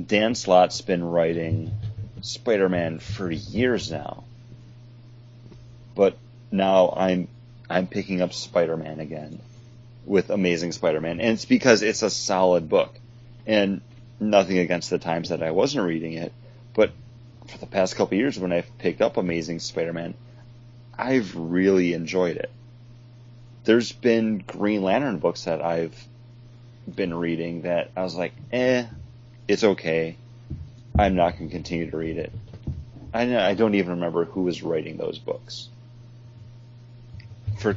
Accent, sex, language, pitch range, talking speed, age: American, male, English, 90-120 Hz, 135 wpm, 30-49